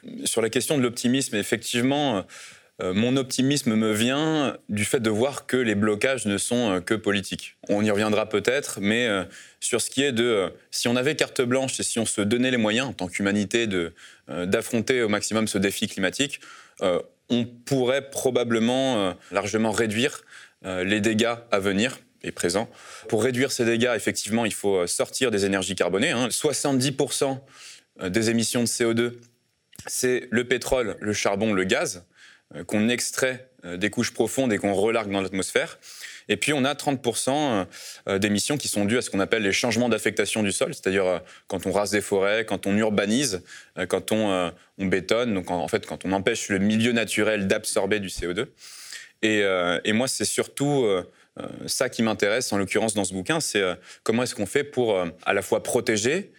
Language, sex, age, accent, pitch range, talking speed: French, male, 20-39, French, 100-125 Hz, 185 wpm